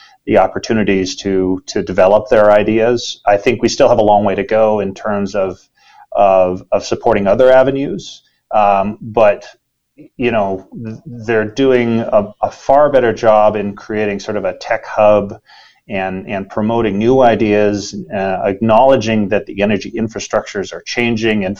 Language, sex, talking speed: English, male, 160 wpm